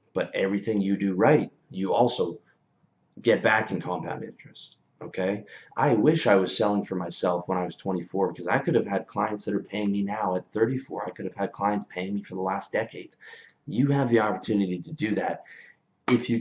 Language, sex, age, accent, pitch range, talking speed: English, male, 30-49, American, 90-105 Hz, 210 wpm